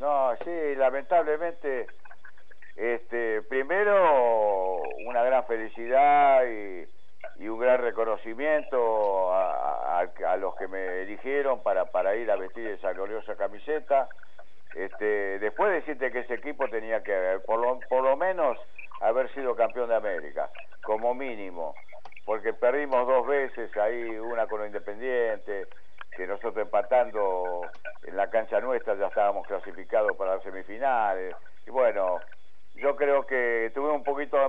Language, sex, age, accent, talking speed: Spanish, male, 60-79, Argentinian, 140 wpm